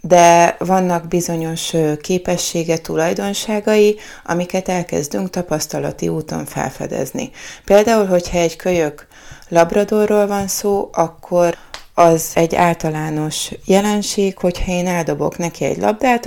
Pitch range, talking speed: 165-195 Hz, 105 wpm